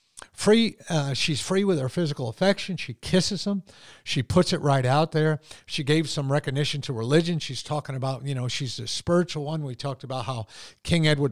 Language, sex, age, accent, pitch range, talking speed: English, male, 50-69, American, 130-165 Hz, 200 wpm